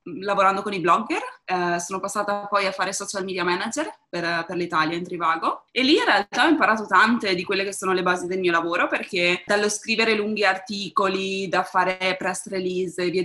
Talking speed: 205 wpm